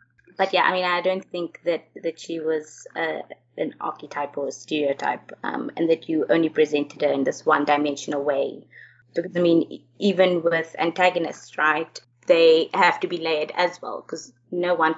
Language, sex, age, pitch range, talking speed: English, female, 20-39, 165-220 Hz, 180 wpm